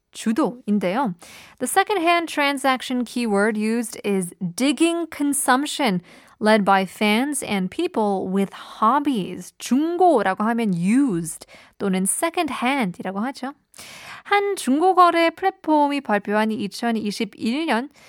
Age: 20-39